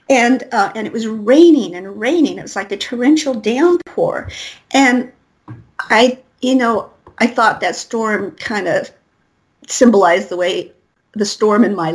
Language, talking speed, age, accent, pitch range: English, 155 wpm, 50-69, American, 200-255 Hz